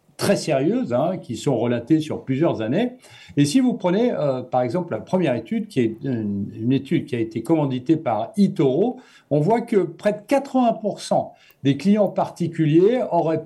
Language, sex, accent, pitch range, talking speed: French, male, French, 140-205 Hz, 180 wpm